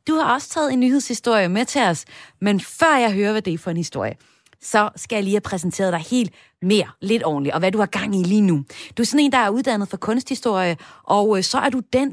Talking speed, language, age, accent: 255 wpm, Danish, 30-49, native